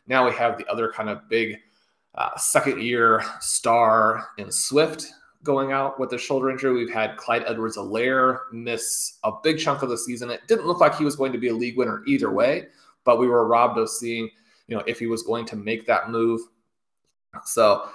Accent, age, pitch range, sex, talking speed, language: American, 20-39, 110-130 Hz, male, 205 wpm, English